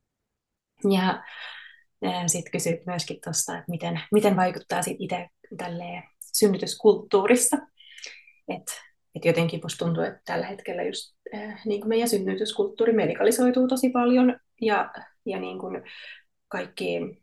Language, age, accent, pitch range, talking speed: Finnish, 20-39, native, 195-245 Hz, 110 wpm